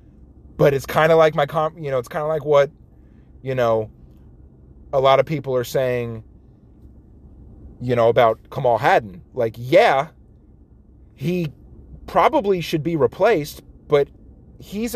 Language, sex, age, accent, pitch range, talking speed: English, male, 30-49, American, 110-180 Hz, 145 wpm